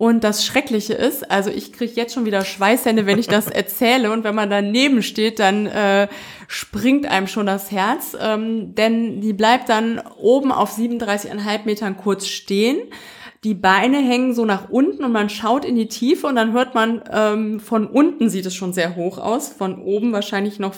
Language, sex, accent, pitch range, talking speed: German, female, German, 200-250 Hz, 195 wpm